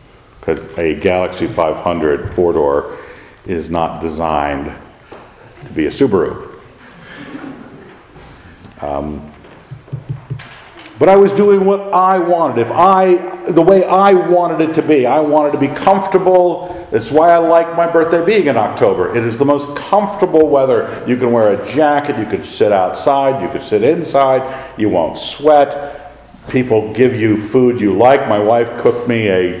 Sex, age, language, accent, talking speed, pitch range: male, 50-69, English, American, 155 wpm, 120-180 Hz